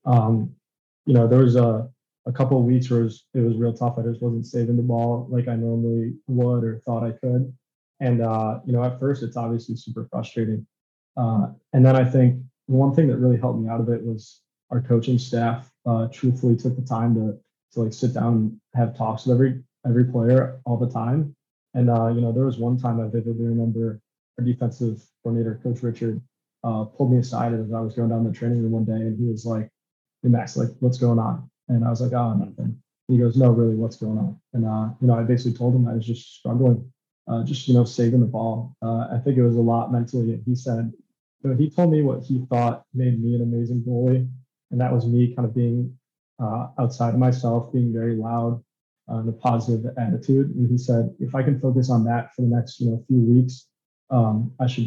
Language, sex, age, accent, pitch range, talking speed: English, male, 20-39, American, 115-125 Hz, 235 wpm